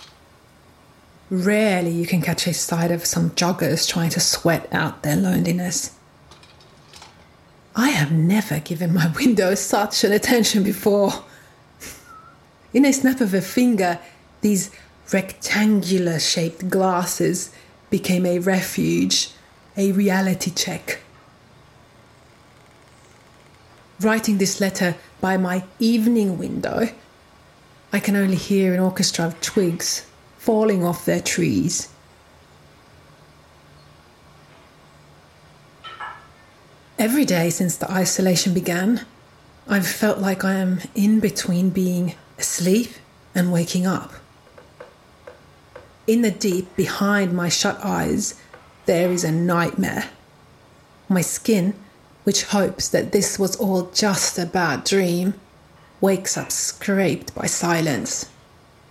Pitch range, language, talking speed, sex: 175-205 Hz, English, 105 wpm, female